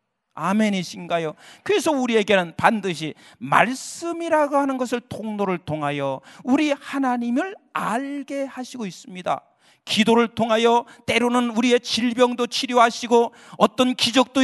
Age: 40-59